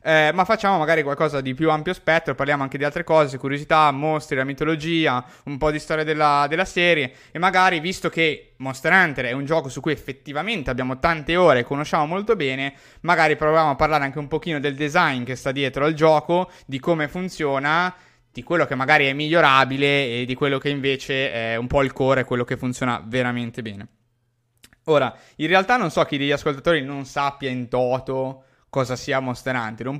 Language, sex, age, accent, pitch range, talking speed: Italian, male, 20-39, native, 130-160 Hz, 200 wpm